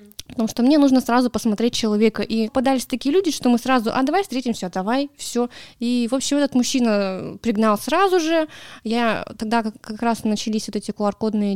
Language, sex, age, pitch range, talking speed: Russian, female, 20-39, 215-255 Hz, 180 wpm